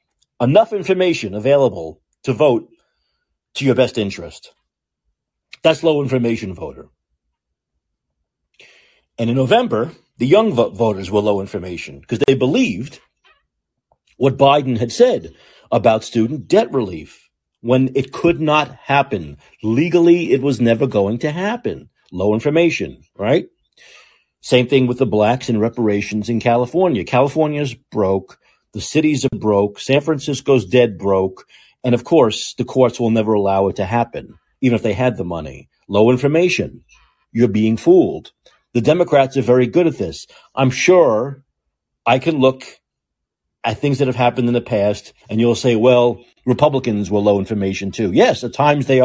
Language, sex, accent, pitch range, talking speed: English, male, American, 105-140 Hz, 150 wpm